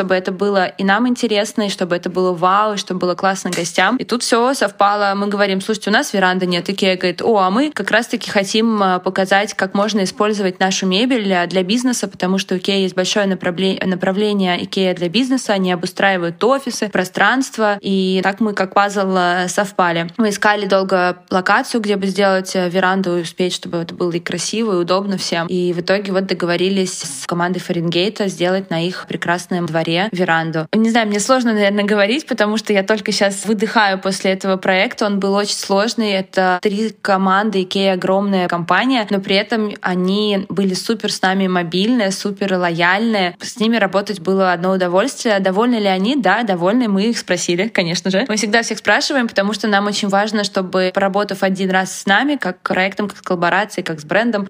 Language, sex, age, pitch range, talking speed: Russian, female, 20-39, 185-210 Hz, 185 wpm